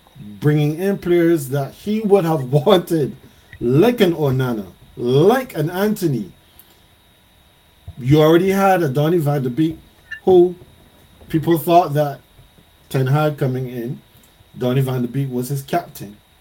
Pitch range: 130-170 Hz